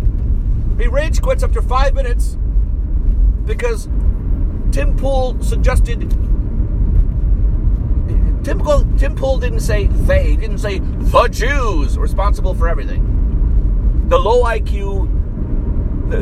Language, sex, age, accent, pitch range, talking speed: English, male, 50-69, American, 75-95 Hz, 105 wpm